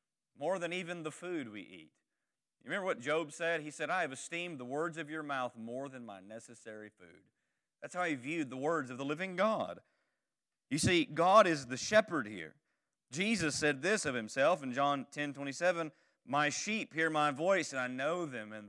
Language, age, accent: English, 40-59, American